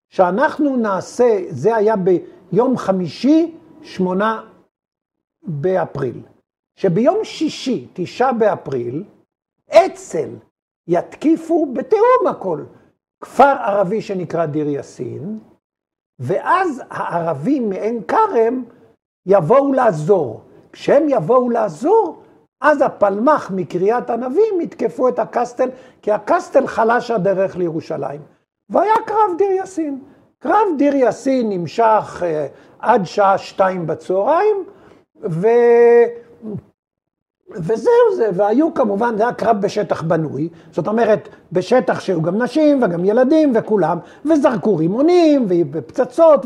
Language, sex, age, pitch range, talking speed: Hebrew, male, 60-79, 195-310 Hz, 100 wpm